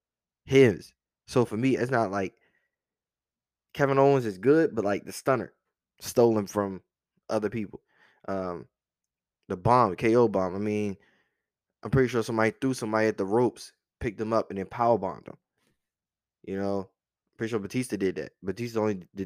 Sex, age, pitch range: male, 20-39, 95-115 Hz